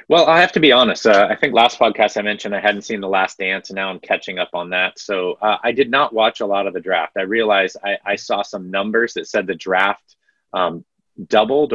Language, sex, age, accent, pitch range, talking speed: English, male, 30-49, American, 95-115 Hz, 255 wpm